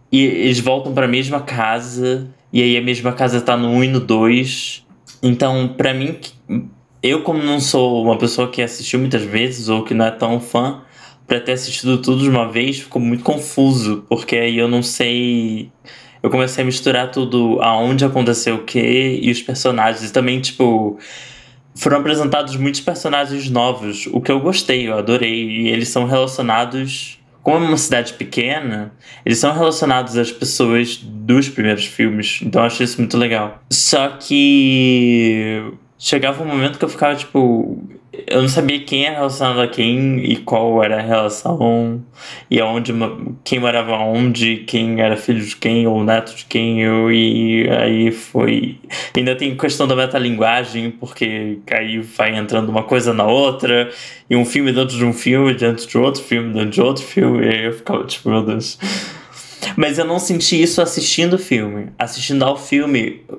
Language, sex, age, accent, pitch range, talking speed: Portuguese, male, 20-39, Brazilian, 115-135 Hz, 175 wpm